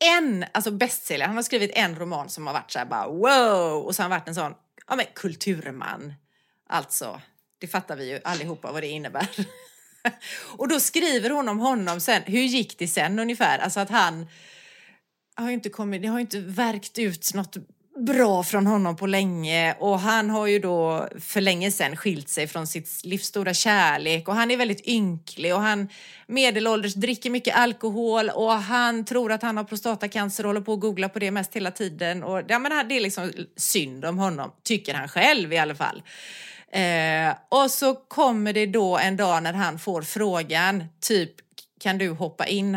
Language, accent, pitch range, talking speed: Swedish, native, 170-220 Hz, 185 wpm